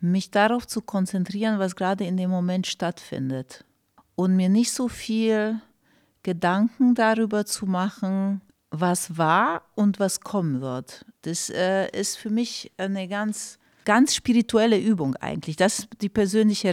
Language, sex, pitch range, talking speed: German, female, 175-220 Hz, 145 wpm